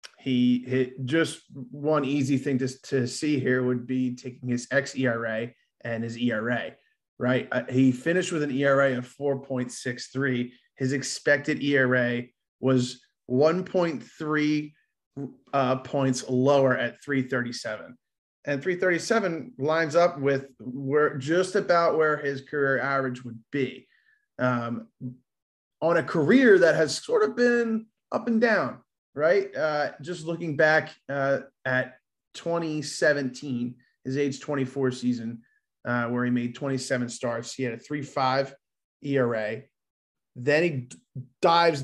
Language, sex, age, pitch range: English, male, 30-49, 125-155 Hz